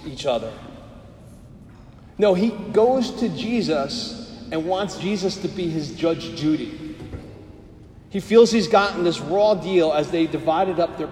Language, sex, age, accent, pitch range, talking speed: English, male, 40-59, American, 135-185 Hz, 145 wpm